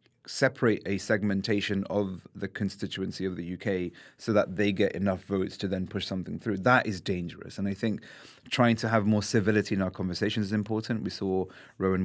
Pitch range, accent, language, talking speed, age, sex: 95-110 Hz, British, English, 195 wpm, 30-49, male